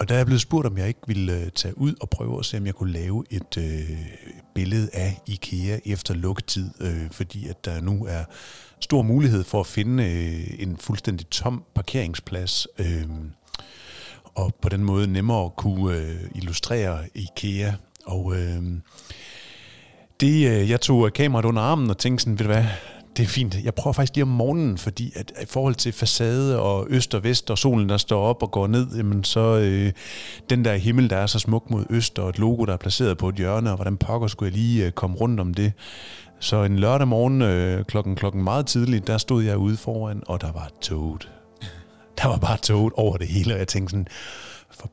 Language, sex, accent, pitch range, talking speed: Danish, male, native, 95-120 Hz, 210 wpm